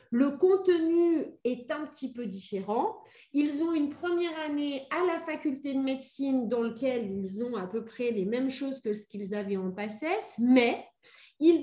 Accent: French